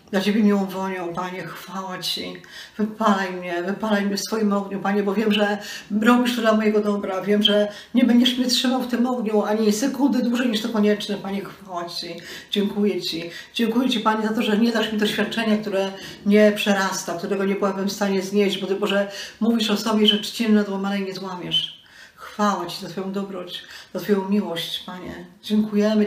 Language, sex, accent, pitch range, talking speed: Polish, female, native, 185-210 Hz, 190 wpm